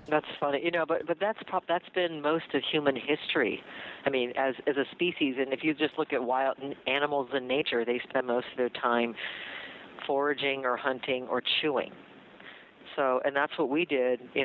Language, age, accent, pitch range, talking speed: English, 50-69, American, 125-145 Hz, 195 wpm